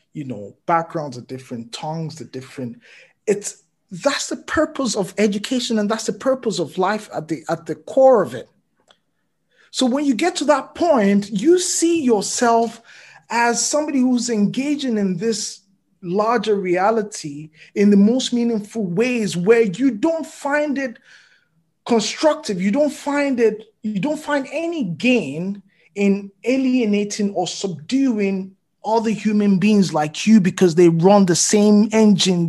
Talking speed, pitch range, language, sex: 150 wpm, 185-250 Hz, English, male